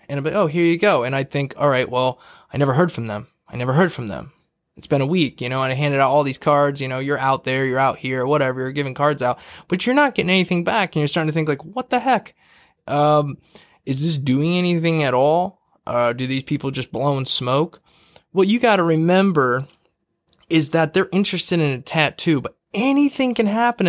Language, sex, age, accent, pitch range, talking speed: English, male, 20-39, American, 135-170 Hz, 240 wpm